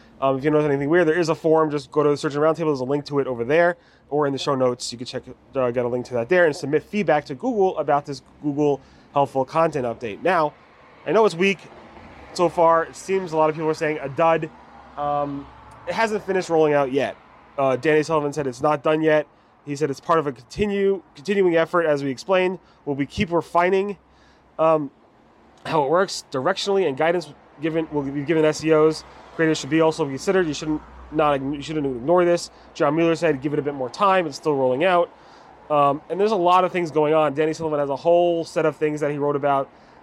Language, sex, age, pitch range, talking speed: English, male, 30-49, 145-170 Hz, 235 wpm